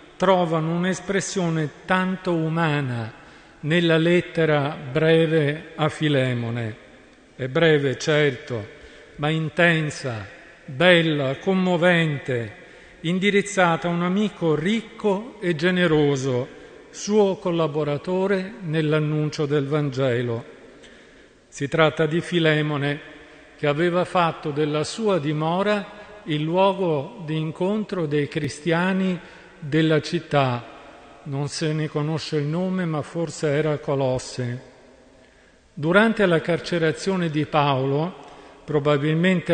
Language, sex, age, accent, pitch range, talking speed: Italian, male, 50-69, native, 145-175 Hz, 95 wpm